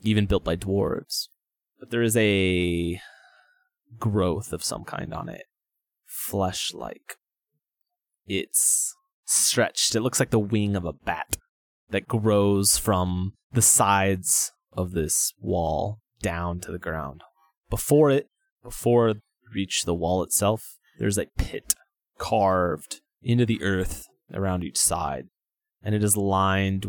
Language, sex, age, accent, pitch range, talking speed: English, male, 20-39, American, 95-125 Hz, 130 wpm